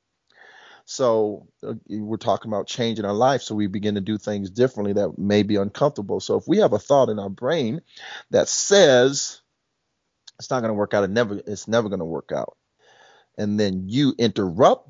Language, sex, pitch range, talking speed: English, male, 105-140 Hz, 190 wpm